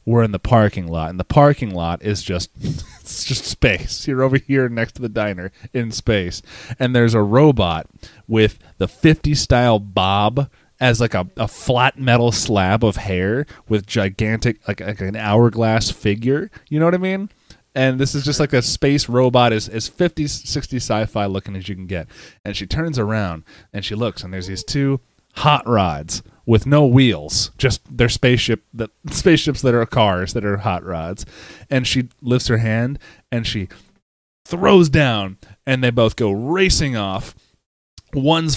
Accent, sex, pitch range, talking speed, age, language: American, male, 105-140 Hz, 180 wpm, 30-49, English